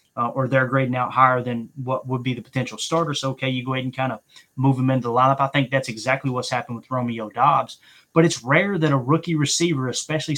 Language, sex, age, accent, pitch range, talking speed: English, male, 20-39, American, 130-150 Hz, 245 wpm